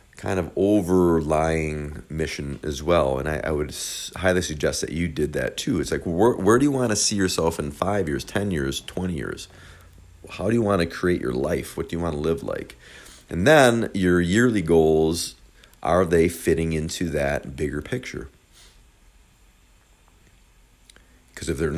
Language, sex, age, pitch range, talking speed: English, male, 40-59, 75-95 Hz, 175 wpm